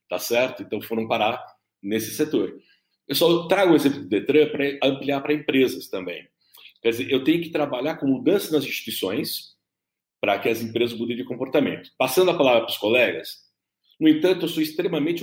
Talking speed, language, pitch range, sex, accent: 185 wpm, Portuguese, 115-155 Hz, male, Brazilian